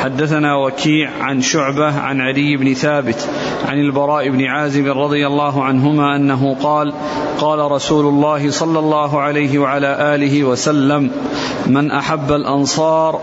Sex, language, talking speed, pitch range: male, Arabic, 130 wpm, 140-150 Hz